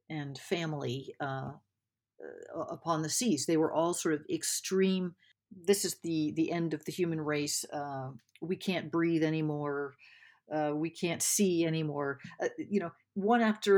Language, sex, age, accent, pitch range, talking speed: English, female, 50-69, American, 145-185 Hz, 155 wpm